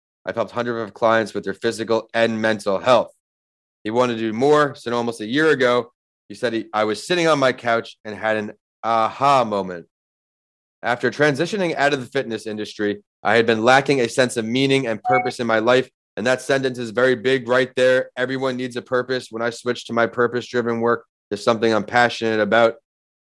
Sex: male